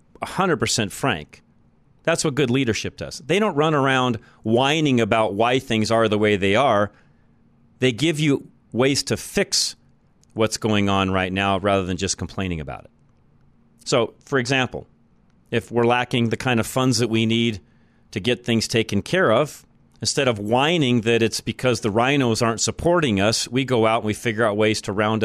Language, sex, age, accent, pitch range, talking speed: English, male, 40-59, American, 105-135 Hz, 180 wpm